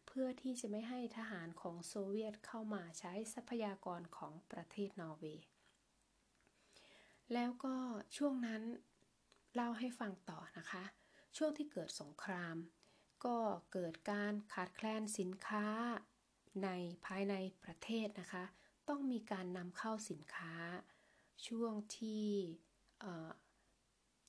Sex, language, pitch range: female, Thai, 180-220 Hz